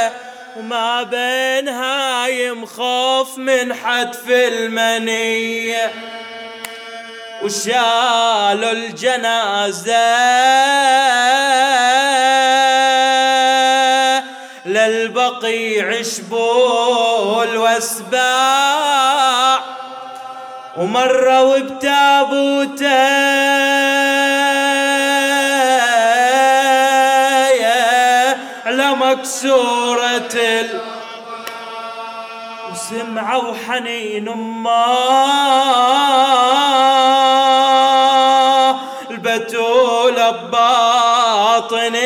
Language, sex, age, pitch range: Arabic, male, 20-39, 230-265 Hz